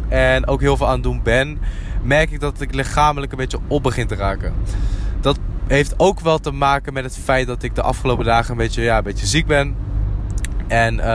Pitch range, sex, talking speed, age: 105-135 Hz, male, 220 wpm, 20-39